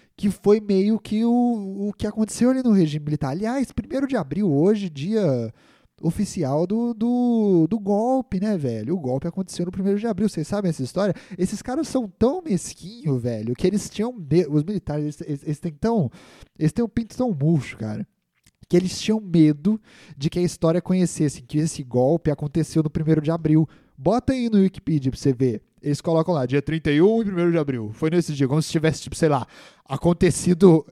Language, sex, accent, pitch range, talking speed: Portuguese, male, Brazilian, 150-200 Hz, 200 wpm